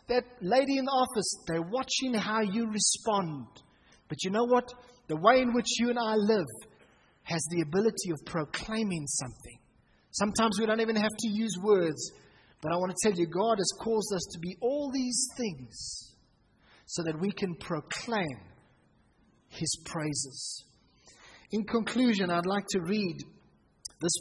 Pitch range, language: 155-225 Hz, English